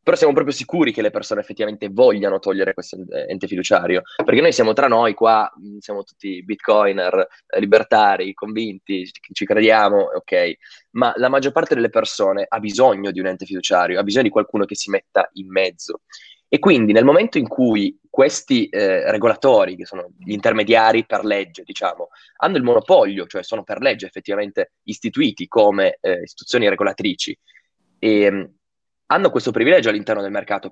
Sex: male